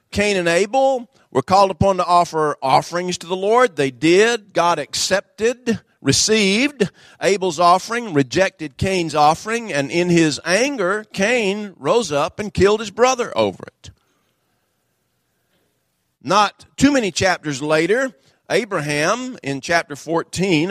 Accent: American